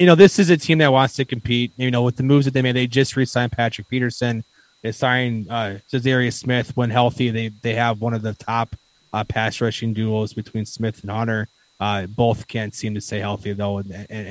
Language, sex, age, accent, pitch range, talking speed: English, male, 20-39, American, 110-130 Hz, 235 wpm